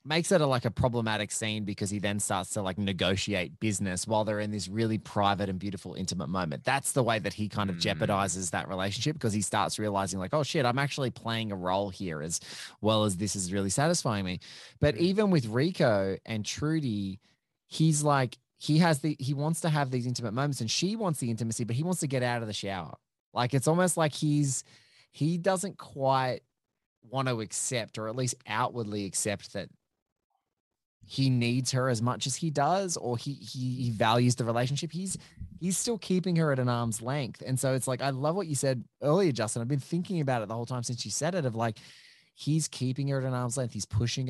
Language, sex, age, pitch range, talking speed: English, male, 20-39, 110-140 Hz, 220 wpm